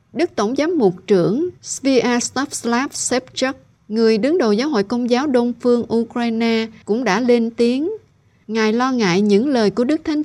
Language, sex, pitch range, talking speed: Vietnamese, female, 195-255 Hz, 170 wpm